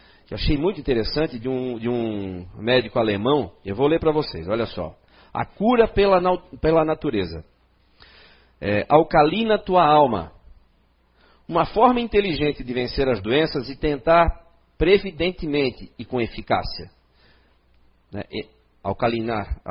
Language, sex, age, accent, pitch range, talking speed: Portuguese, male, 50-69, Brazilian, 115-170 Hz, 130 wpm